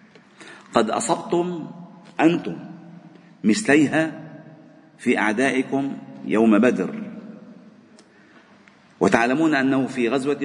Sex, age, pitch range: male, 50-69, 145-225 Hz